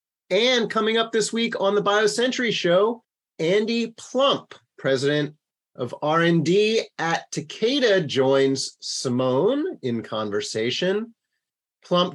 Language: English